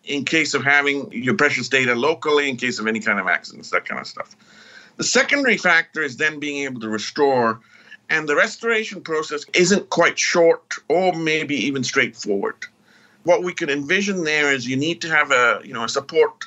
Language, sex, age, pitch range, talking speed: English, male, 50-69, 125-170 Hz, 195 wpm